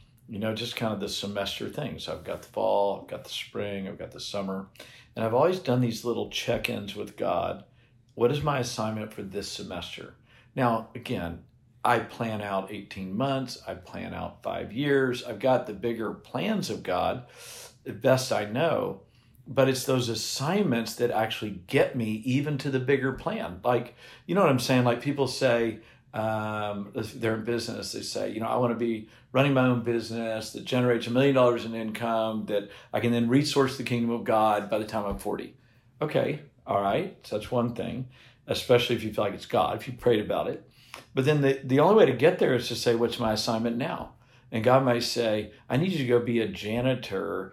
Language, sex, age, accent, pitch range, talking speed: English, male, 50-69, American, 110-125 Hz, 210 wpm